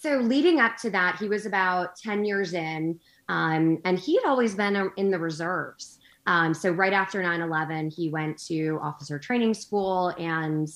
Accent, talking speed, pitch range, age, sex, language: American, 185 wpm, 150-190 Hz, 20-39, female, English